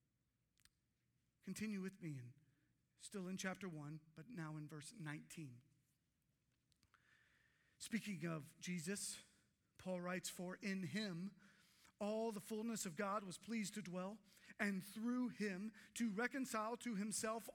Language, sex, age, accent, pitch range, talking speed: English, male, 40-59, American, 200-250 Hz, 125 wpm